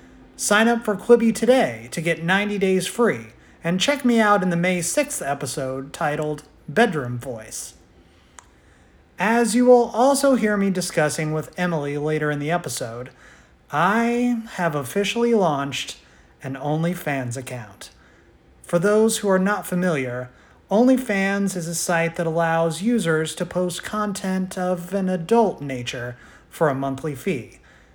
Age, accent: 30-49, American